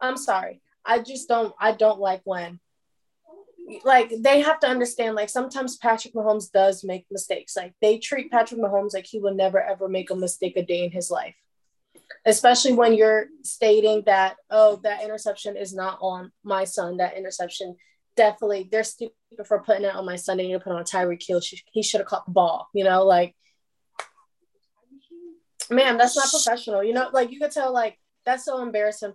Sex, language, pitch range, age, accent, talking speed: female, English, 185-230 Hz, 20-39, American, 195 wpm